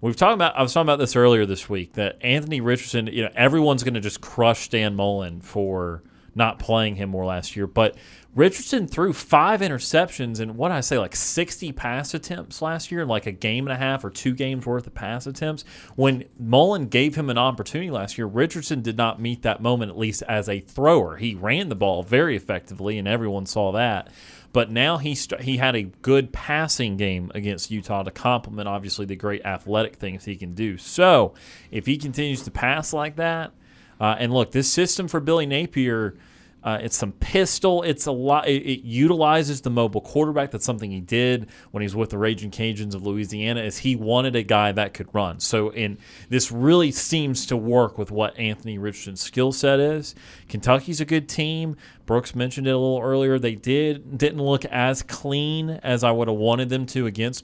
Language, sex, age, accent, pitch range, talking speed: English, male, 30-49, American, 105-140 Hz, 205 wpm